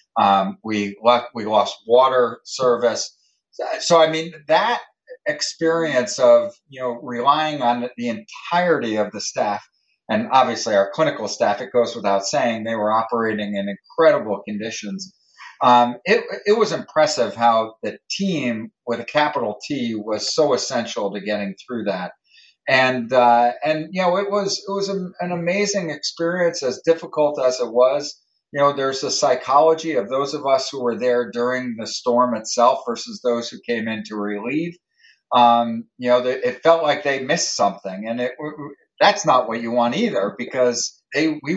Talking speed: 170 wpm